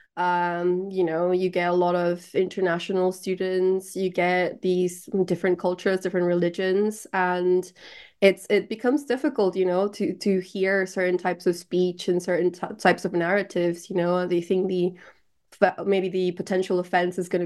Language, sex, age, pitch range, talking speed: English, female, 20-39, 180-200 Hz, 165 wpm